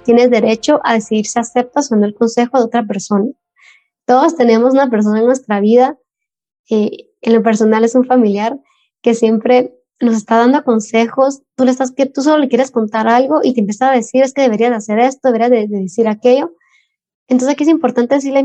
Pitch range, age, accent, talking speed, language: 225-265 Hz, 20-39, Mexican, 200 wpm, Spanish